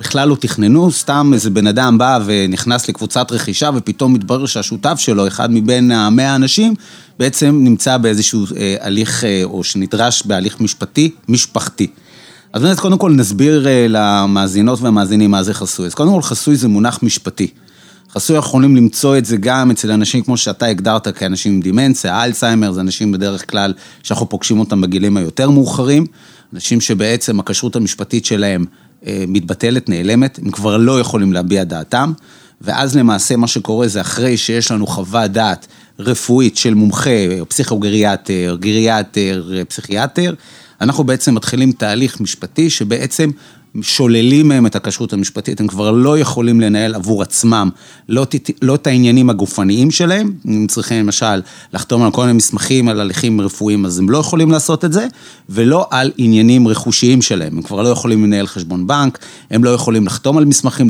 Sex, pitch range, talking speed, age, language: male, 100-130 Hz, 155 wpm, 30-49, Hebrew